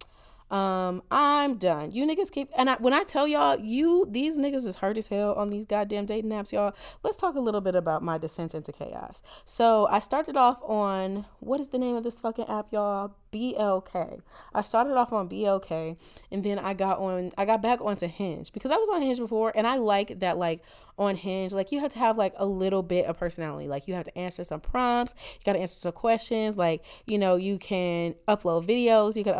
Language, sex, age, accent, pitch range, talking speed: English, female, 20-39, American, 190-240 Hz, 230 wpm